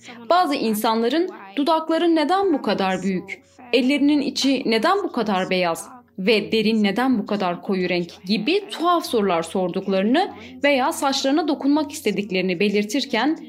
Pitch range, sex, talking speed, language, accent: 195-280 Hz, female, 130 wpm, Turkish, native